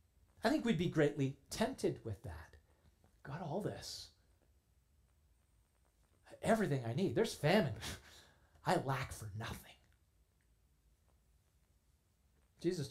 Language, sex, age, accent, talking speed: English, male, 40-59, American, 100 wpm